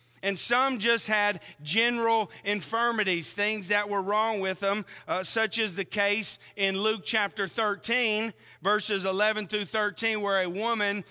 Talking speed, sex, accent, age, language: 150 wpm, male, American, 40-59, English